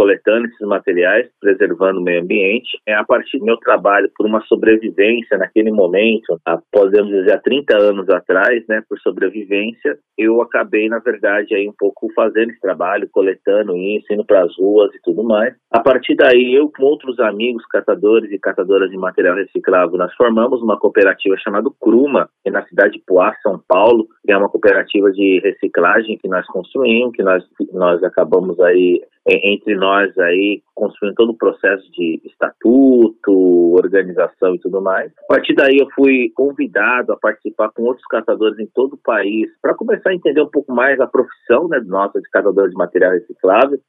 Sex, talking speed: male, 180 wpm